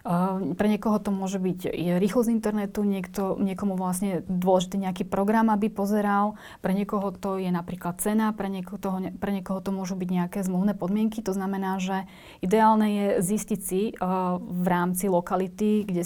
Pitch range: 180-205 Hz